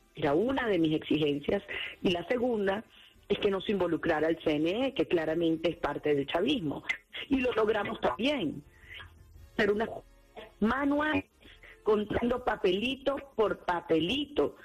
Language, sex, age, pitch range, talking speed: Portuguese, female, 40-59, 165-230 Hz, 125 wpm